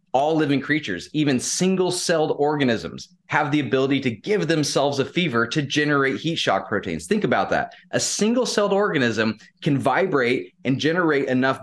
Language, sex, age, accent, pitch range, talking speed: English, male, 20-39, American, 105-145 Hz, 155 wpm